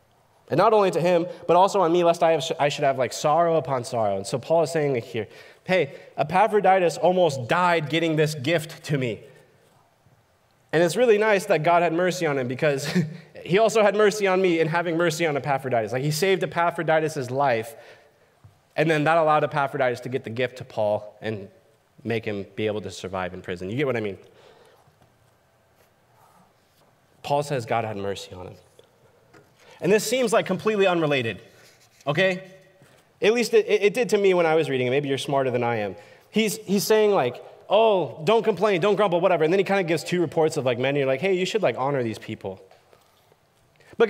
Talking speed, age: 205 wpm, 20-39